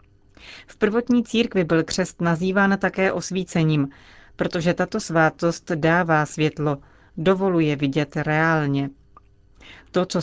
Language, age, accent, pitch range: Czech, 40-59, native, 155-190 Hz